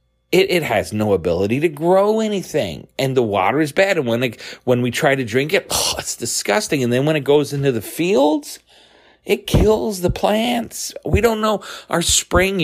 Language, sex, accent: English, male, American